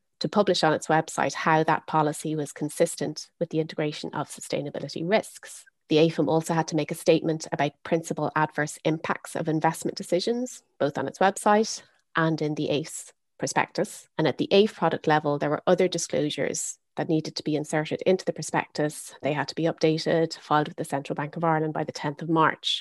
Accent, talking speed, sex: Irish, 195 wpm, female